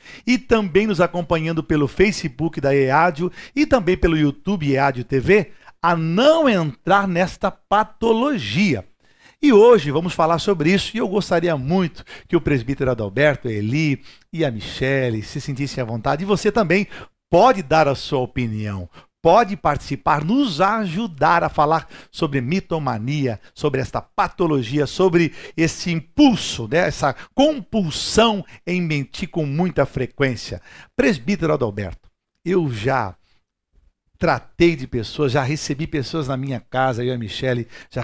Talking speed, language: 145 wpm, Portuguese